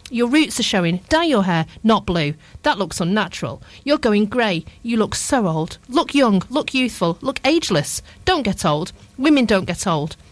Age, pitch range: 40-59, 185-255 Hz